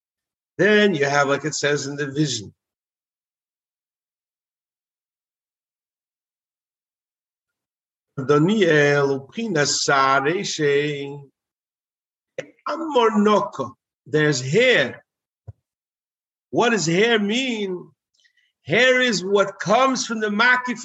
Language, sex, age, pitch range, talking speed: English, male, 50-69, 145-210 Hz, 65 wpm